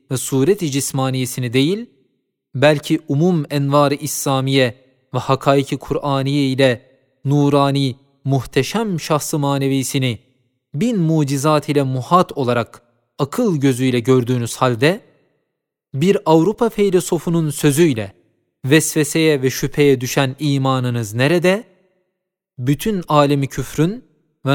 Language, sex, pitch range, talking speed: Turkish, male, 130-165 Hz, 95 wpm